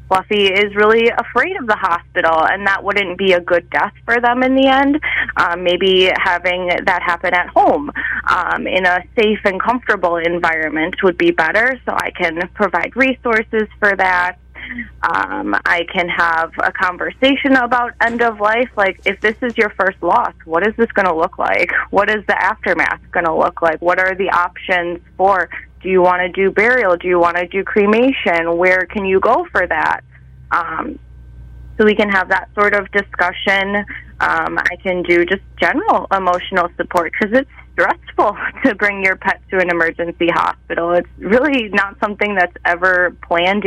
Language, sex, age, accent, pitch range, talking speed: English, female, 20-39, American, 175-210 Hz, 180 wpm